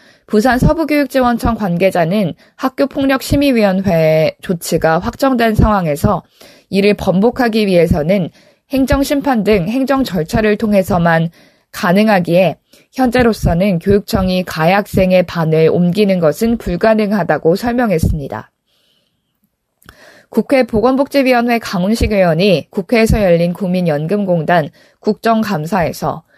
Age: 20-39